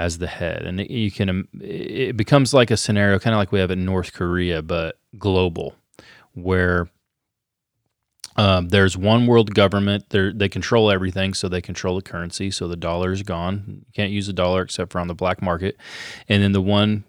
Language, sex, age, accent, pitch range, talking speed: English, male, 30-49, American, 90-105 Hz, 195 wpm